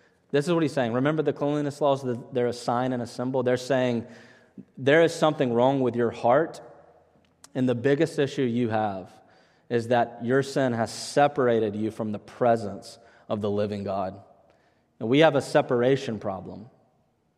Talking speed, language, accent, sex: 175 wpm, English, American, male